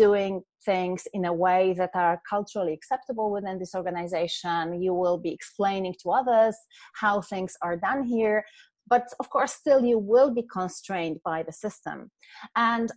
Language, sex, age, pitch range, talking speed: English, female, 30-49, 180-225 Hz, 160 wpm